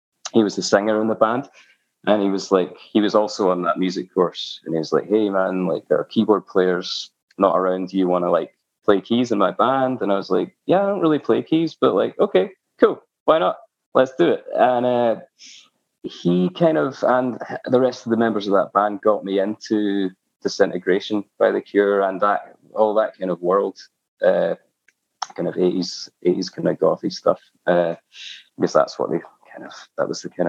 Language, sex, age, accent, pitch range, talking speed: English, male, 20-39, British, 90-110 Hz, 215 wpm